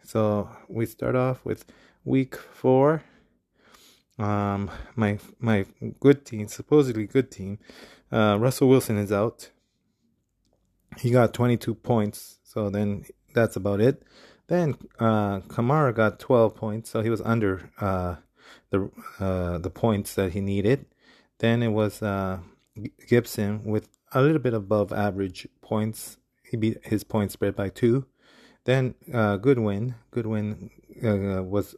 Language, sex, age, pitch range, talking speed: English, male, 20-39, 100-120 Hz, 140 wpm